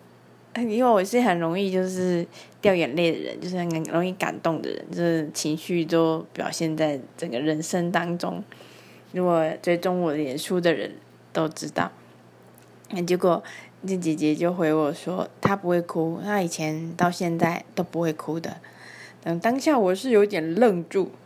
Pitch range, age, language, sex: 160-185 Hz, 20-39, Chinese, female